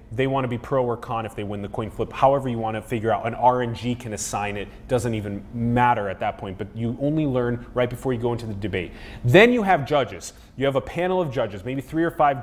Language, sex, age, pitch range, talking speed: English, male, 30-49, 120-160 Hz, 265 wpm